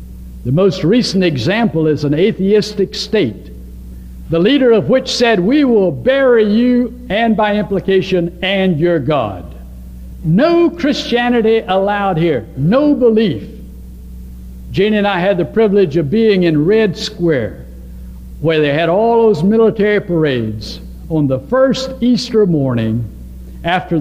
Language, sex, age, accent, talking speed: English, male, 60-79, American, 130 wpm